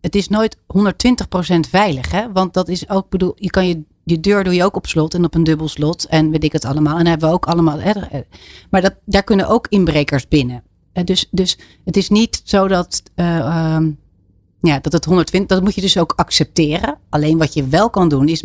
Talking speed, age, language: 205 wpm, 40-59, Dutch